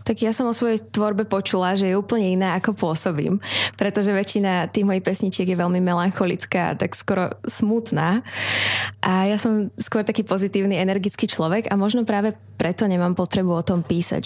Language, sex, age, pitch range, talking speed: Slovak, female, 20-39, 175-205 Hz, 175 wpm